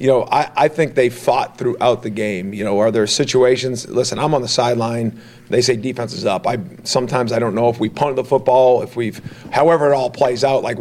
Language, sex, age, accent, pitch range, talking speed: English, male, 40-59, American, 120-140 Hz, 240 wpm